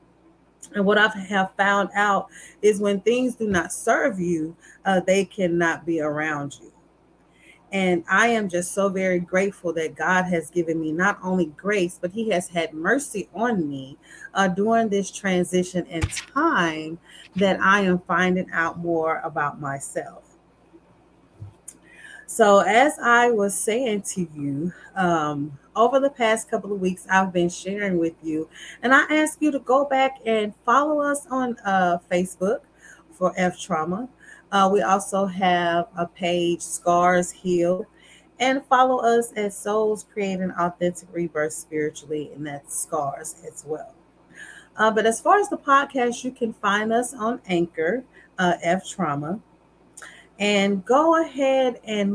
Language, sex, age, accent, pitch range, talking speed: English, female, 30-49, American, 170-225 Hz, 150 wpm